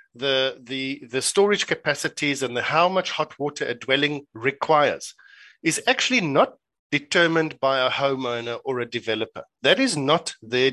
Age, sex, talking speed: 50-69, male, 155 wpm